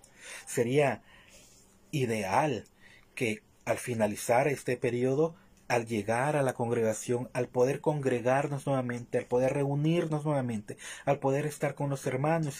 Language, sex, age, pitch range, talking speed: Spanish, male, 30-49, 125-160 Hz, 125 wpm